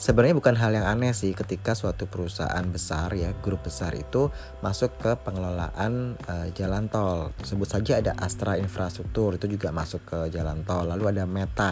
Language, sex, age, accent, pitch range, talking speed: Indonesian, male, 20-39, native, 90-105 Hz, 175 wpm